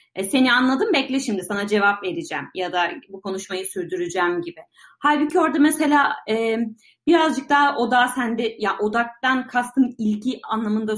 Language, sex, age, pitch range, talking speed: Turkish, female, 30-49, 200-280 Hz, 140 wpm